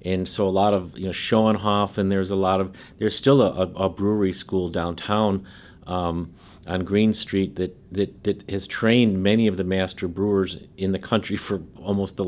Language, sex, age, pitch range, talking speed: English, male, 50-69, 90-105 Hz, 200 wpm